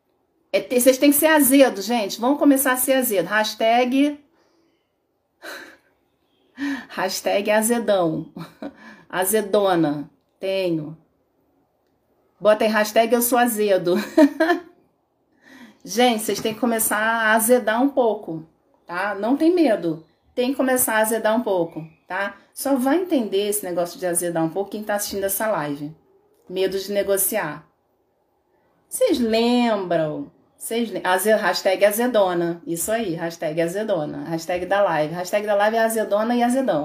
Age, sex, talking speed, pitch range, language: 40-59, female, 130 wpm, 190-270 Hz, Portuguese